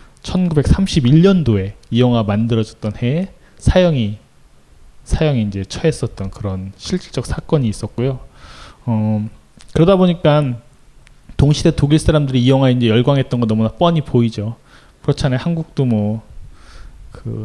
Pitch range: 110-145 Hz